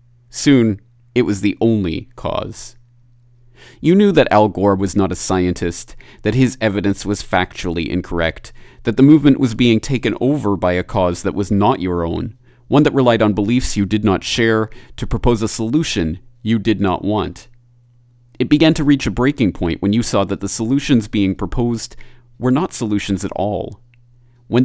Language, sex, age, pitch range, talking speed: English, male, 30-49, 100-120 Hz, 180 wpm